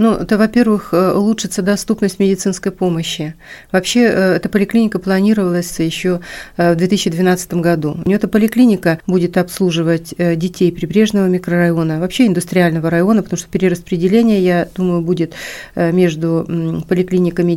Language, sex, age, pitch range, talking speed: Russian, female, 40-59, 170-190 Hz, 120 wpm